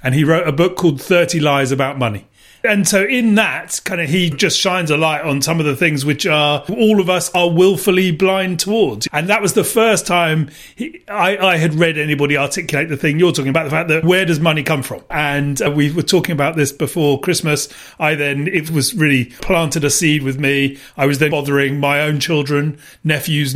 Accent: British